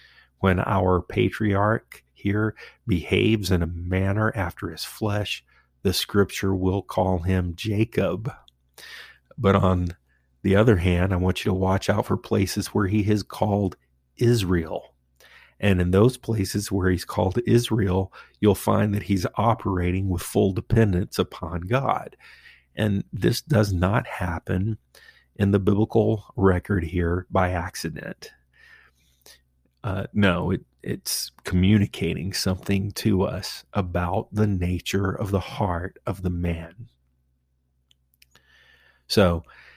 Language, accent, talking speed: English, American, 125 wpm